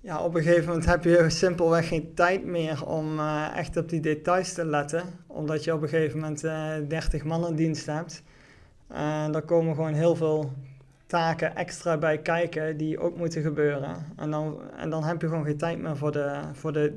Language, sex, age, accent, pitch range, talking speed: Dutch, male, 20-39, Dutch, 145-165 Hz, 210 wpm